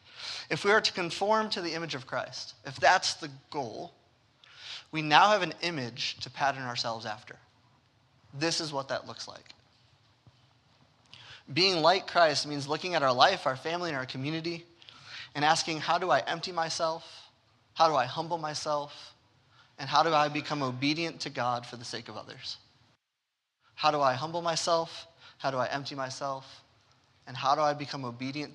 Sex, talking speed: male, 175 wpm